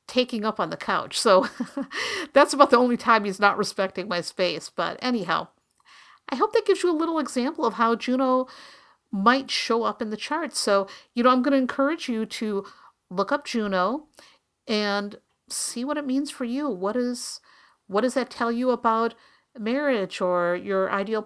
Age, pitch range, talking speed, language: 50-69, 205-260 Hz, 185 wpm, English